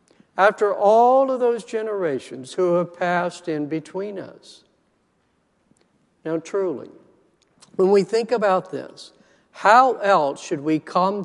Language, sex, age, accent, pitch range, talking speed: English, male, 60-79, American, 150-195 Hz, 125 wpm